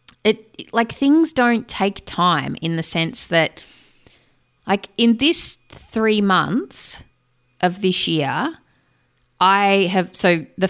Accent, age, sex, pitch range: Australian, 20-39, female, 150-205 Hz